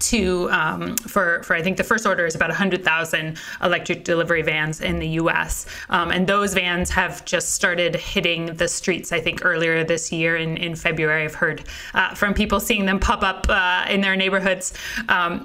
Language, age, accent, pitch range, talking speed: English, 20-39, American, 165-200 Hz, 195 wpm